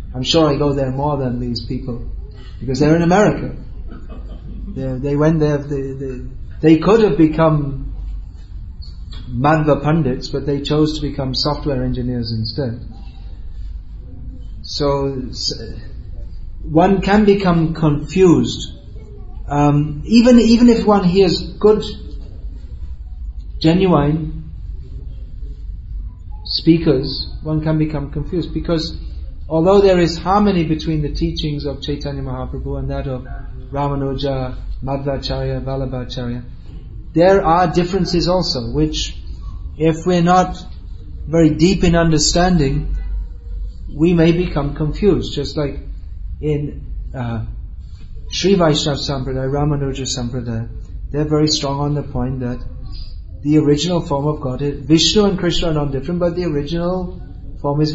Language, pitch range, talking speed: English, 115-160 Hz, 120 wpm